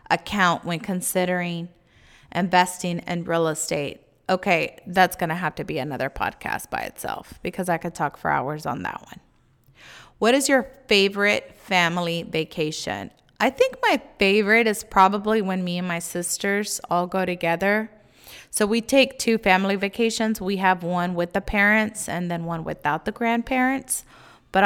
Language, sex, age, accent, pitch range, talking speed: English, female, 20-39, American, 165-200 Hz, 160 wpm